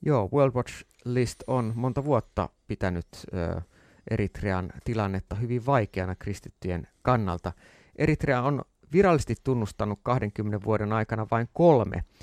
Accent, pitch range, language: native, 100-130 Hz, Finnish